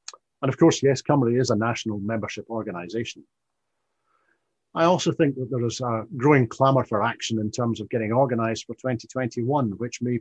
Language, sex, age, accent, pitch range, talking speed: English, male, 50-69, British, 110-135 Hz, 175 wpm